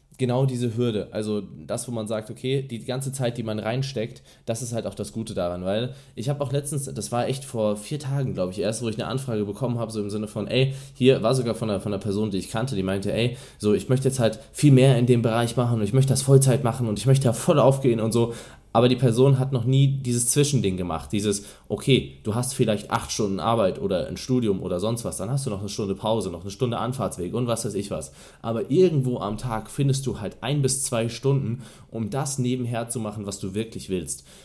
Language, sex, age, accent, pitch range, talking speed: German, male, 20-39, German, 105-135 Hz, 255 wpm